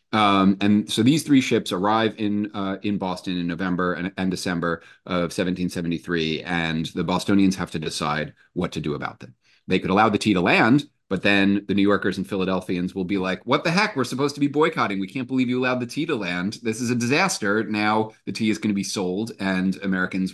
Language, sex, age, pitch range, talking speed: English, male, 30-49, 90-110 Hz, 225 wpm